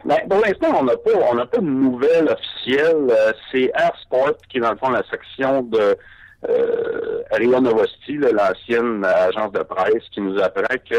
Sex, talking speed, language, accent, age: male, 185 wpm, French, French, 60-79